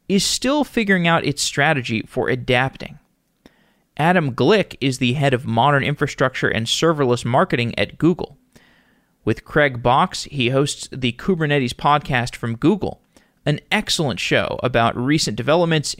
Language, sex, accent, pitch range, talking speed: English, male, American, 120-145 Hz, 140 wpm